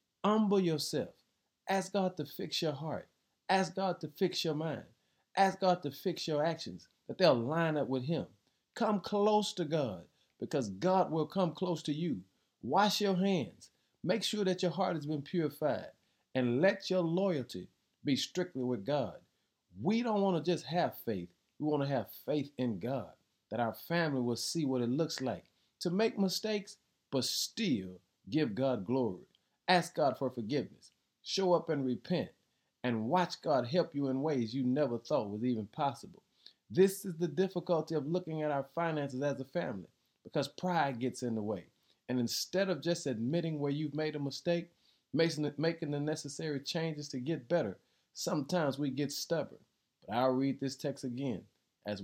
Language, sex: English, male